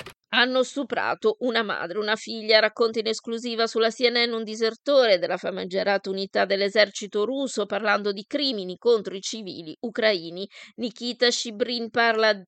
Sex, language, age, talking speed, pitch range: female, Italian, 20-39, 135 wpm, 200-235 Hz